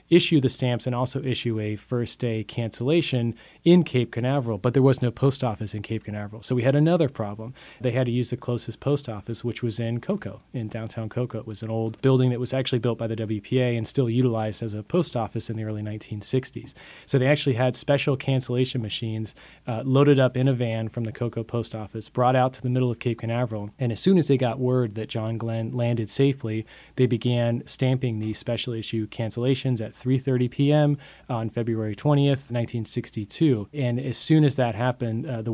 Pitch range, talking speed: 115-130 Hz, 210 wpm